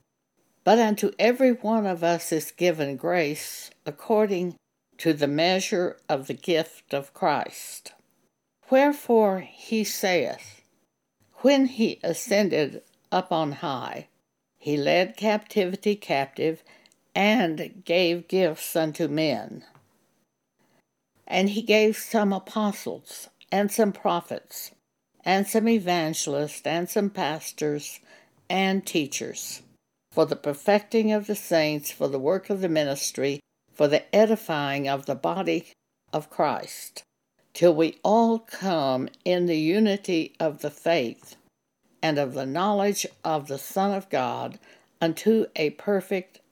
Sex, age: female, 60-79